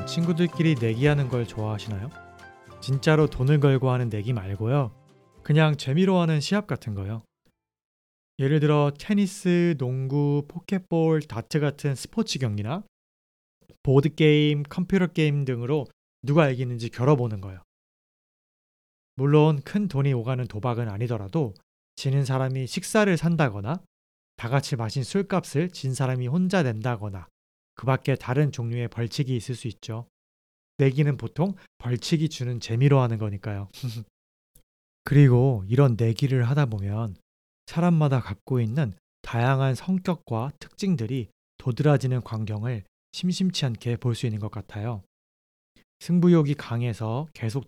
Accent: Korean